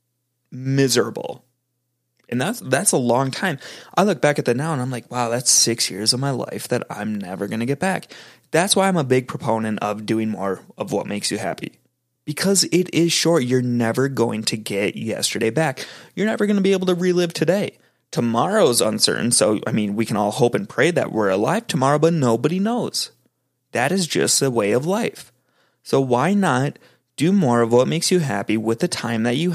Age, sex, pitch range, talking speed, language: 20-39, male, 120-155 Hz, 210 wpm, English